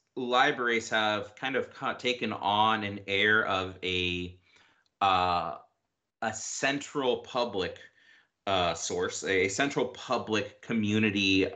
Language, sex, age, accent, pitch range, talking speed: English, male, 30-49, American, 90-110 Hz, 105 wpm